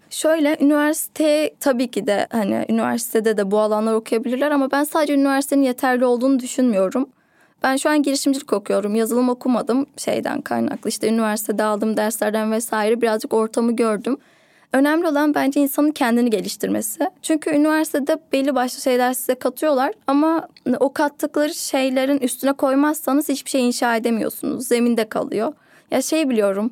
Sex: female